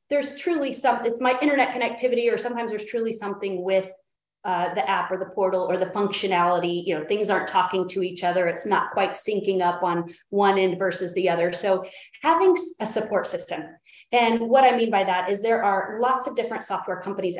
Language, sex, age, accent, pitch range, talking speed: English, female, 30-49, American, 190-255 Hz, 205 wpm